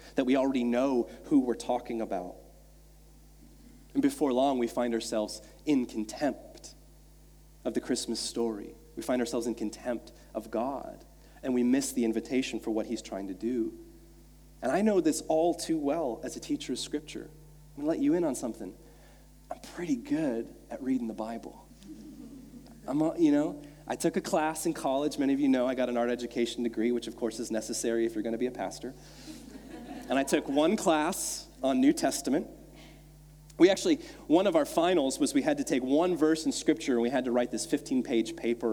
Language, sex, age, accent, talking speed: English, male, 30-49, American, 195 wpm